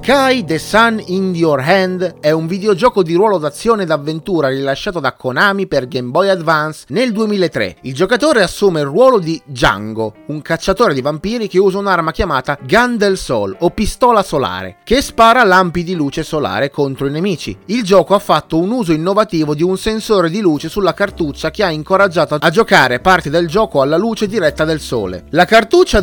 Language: Italian